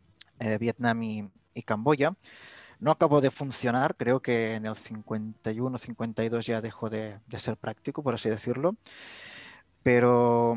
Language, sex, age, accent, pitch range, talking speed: Spanish, male, 20-39, Spanish, 110-125 Hz, 135 wpm